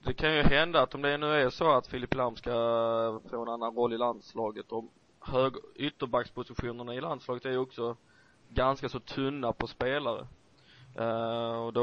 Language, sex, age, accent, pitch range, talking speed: Swedish, male, 20-39, native, 115-130 Hz, 185 wpm